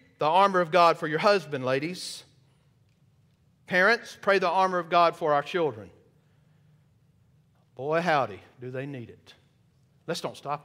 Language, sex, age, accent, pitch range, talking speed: English, male, 50-69, American, 145-190 Hz, 145 wpm